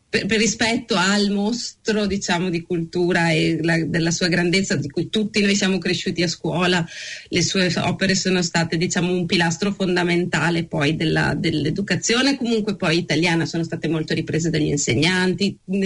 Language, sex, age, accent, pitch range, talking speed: Italian, female, 30-49, native, 170-205 Hz, 160 wpm